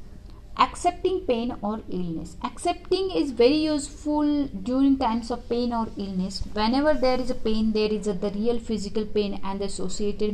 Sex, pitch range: female, 170-255 Hz